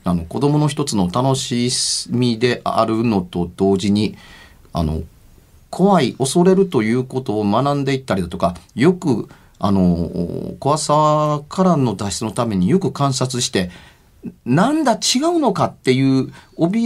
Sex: male